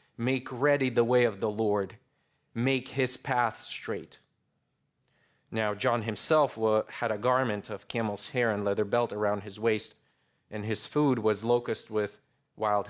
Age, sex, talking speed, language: 30-49, male, 155 wpm, English